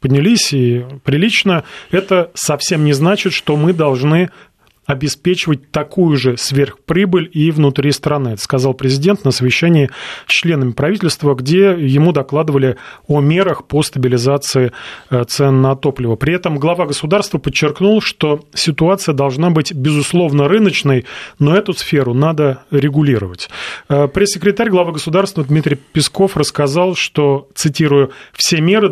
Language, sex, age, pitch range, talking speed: Russian, male, 30-49, 135-175 Hz, 125 wpm